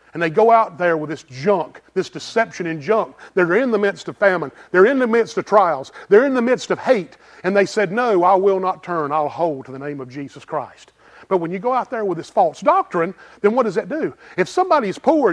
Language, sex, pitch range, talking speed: English, male, 145-230 Hz, 250 wpm